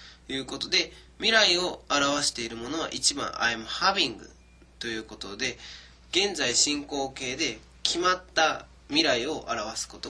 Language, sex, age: Japanese, male, 20-39